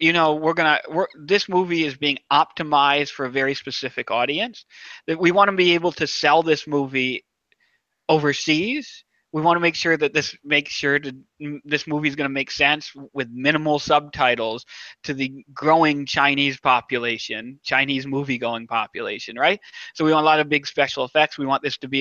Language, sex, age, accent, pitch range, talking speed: English, male, 20-39, American, 135-165 Hz, 190 wpm